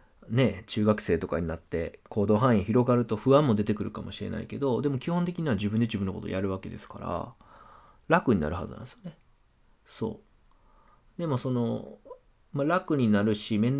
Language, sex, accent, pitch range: Japanese, male, native, 105-140 Hz